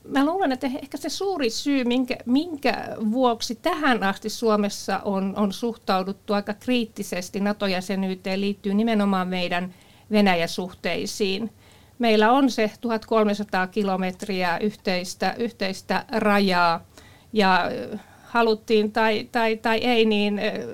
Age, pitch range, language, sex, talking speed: 50-69, 195-225 Hz, Finnish, female, 115 wpm